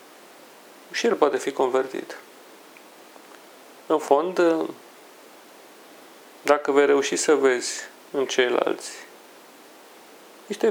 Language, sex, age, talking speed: Romanian, male, 40-59, 85 wpm